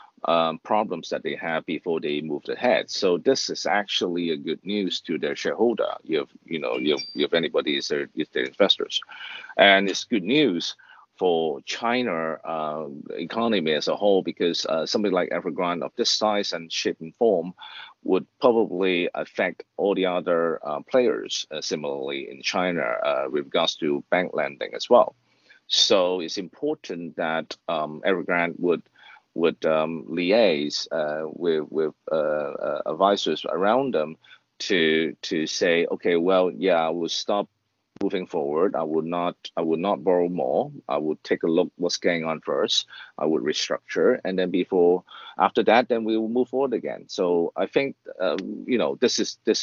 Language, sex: English, male